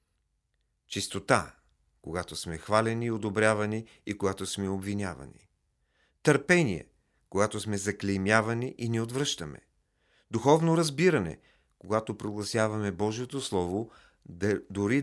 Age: 40-59